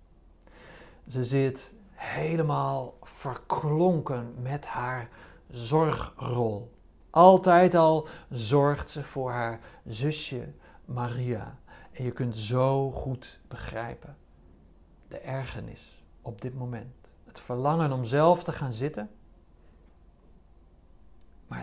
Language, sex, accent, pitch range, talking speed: Dutch, male, Dutch, 100-145 Hz, 95 wpm